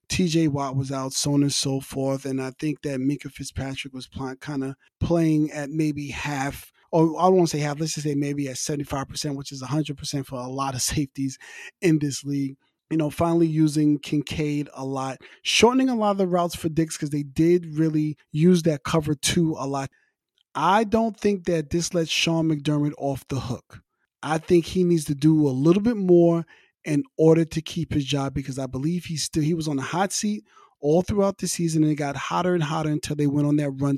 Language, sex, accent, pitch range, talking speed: English, male, American, 140-170 Hz, 215 wpm